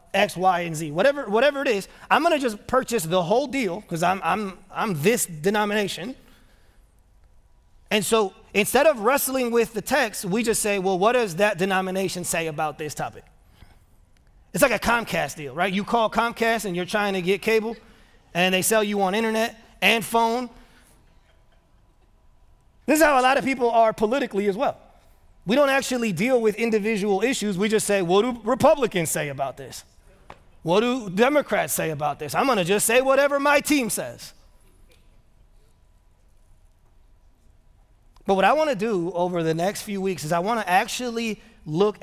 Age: 30-49